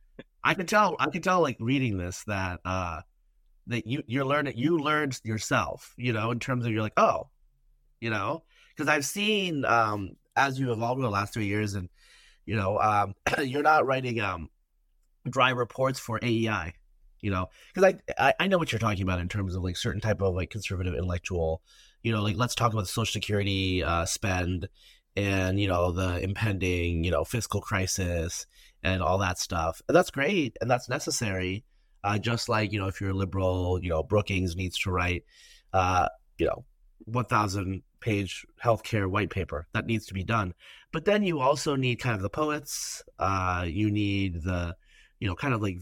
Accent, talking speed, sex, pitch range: American, 195 wpm, male, 95-125 Hz